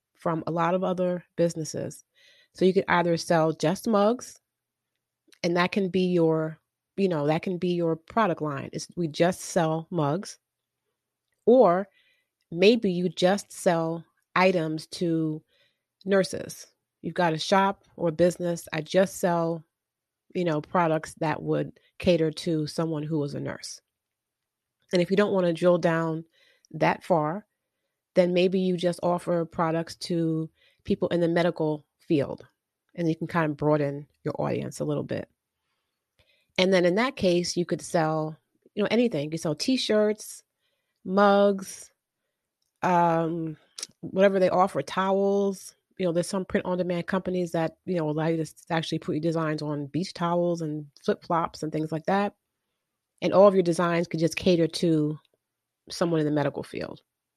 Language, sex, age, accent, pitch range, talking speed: English, female, 30-49, American, 160-185 Hz, 160 wpm